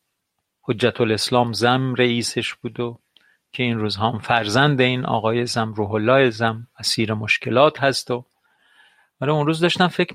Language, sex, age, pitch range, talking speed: Persian, male, 40-59, 115-145 Hz, 150 wpm